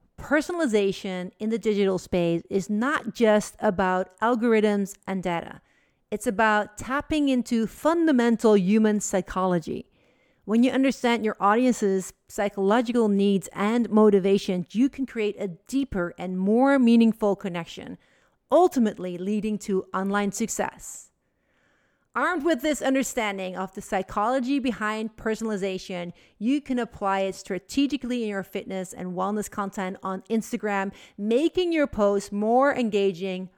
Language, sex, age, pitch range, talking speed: English, female, 50-69, 195-240 Hz, 125 wpm